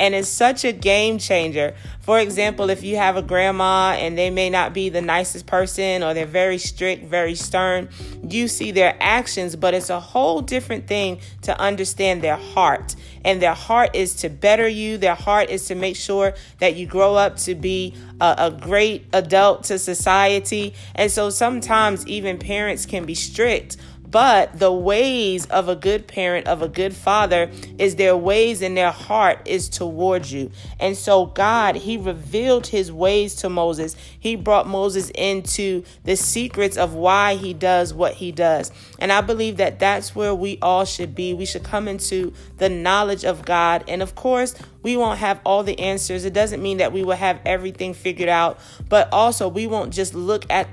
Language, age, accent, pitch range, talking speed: English, 30-49, American, 180-205 Hz, 190 wpm